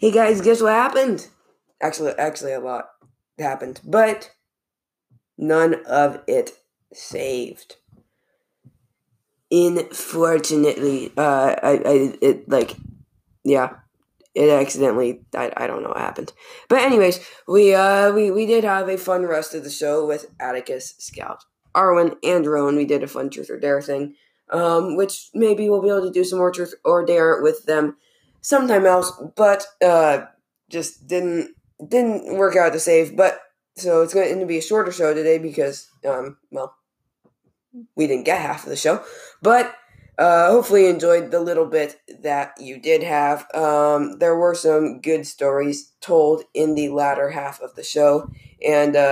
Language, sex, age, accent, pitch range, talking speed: English, female, 20-39, American, 145-200 Hz, 160 wpm